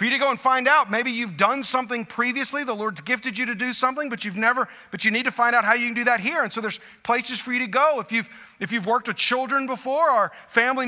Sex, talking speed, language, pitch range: male, 285 wpm, English, 195-255 Hz